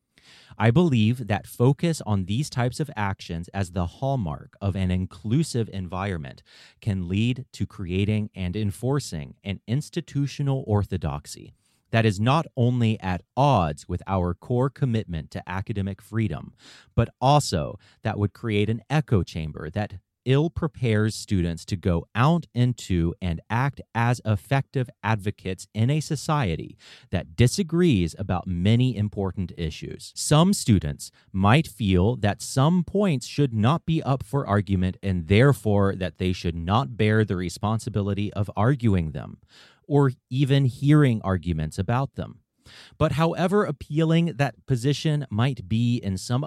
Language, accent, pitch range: English, American, 95-135 Hz